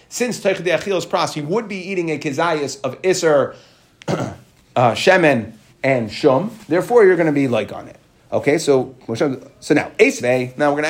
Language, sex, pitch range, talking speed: English, male, 130-175 Hz, 175 wpm